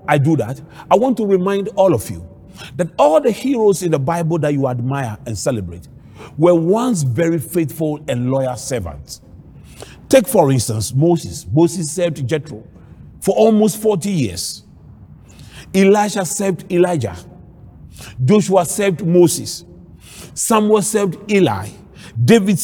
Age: 40-59